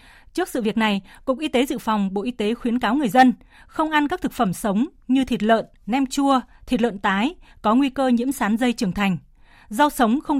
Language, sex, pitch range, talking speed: Vietnamese, female, 225-280 Hz, 235 wpm